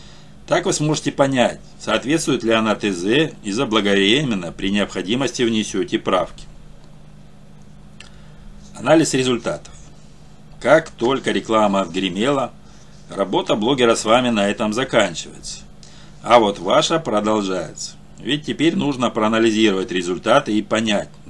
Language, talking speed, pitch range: Russian, 105 wpm, 95-120 Hz